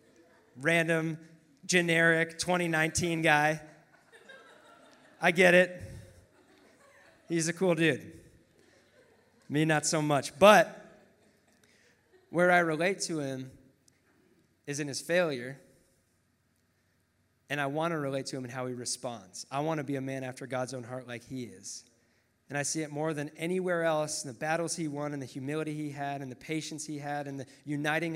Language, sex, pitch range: English, male, 135-160 Hz